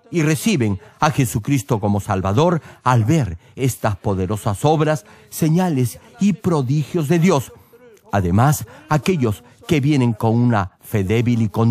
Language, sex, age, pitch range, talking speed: Spanish, male, 50-69, 115-165 Hz, 135 wpm